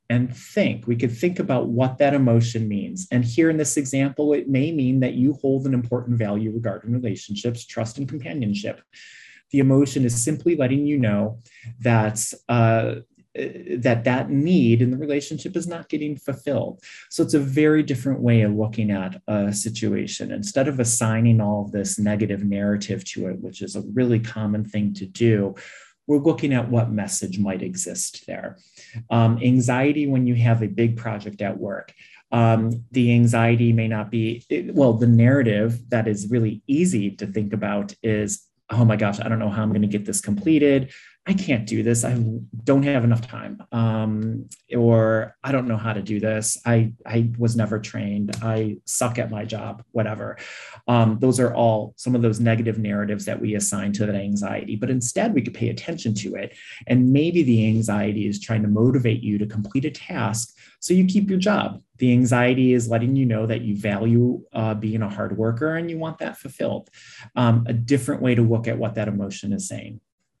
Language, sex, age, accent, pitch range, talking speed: English, male, 30-49, American, 110-130 Hz, 190 wpm